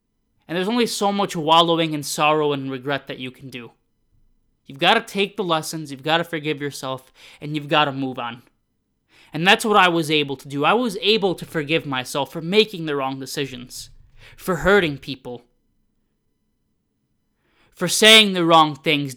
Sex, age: male, 20-39